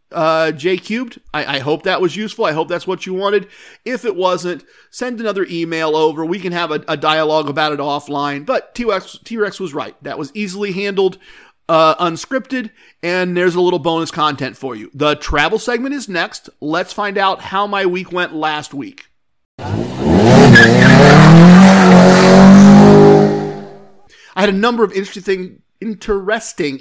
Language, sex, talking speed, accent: English, male, 160 wpm, American